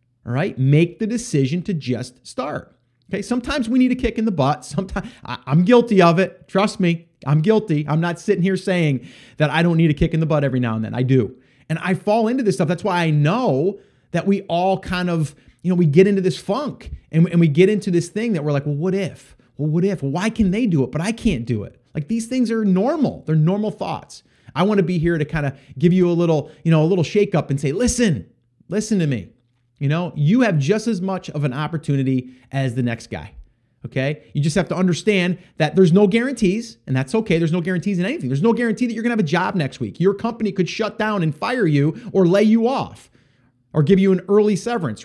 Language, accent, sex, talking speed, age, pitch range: English, American, male, 250 wpm, 30-49, 140-200 Hz